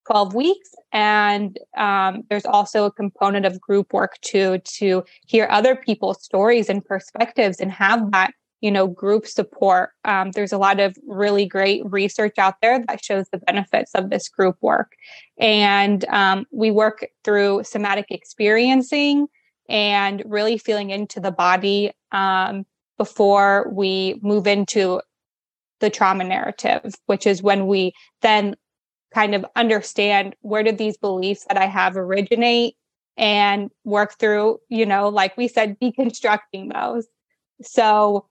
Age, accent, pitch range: 20-39, American, 200-225 Hz